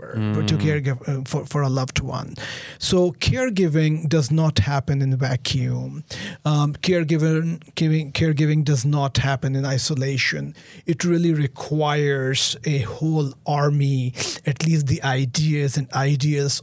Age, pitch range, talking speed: 40-59, 135-165 Hz, 120 wpm